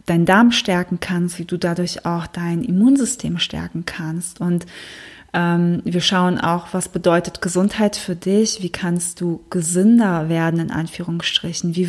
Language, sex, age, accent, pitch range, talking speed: German, female, 20-39, German, 170-185 Hz, 150 wpm